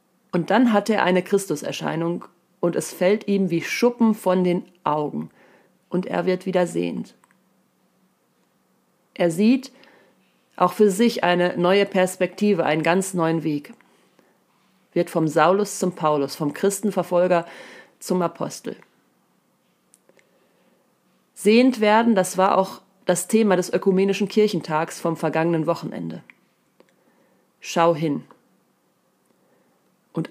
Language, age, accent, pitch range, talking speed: German, 30-49, German, 170-205 Hz, 115 wpm